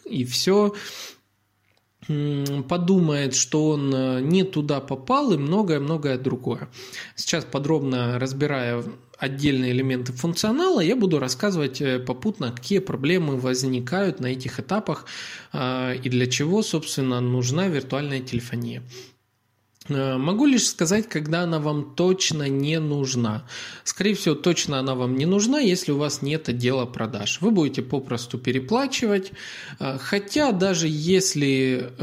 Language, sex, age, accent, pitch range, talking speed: Russian, male, 20-39, native, 130-180 Hz, 120 wpm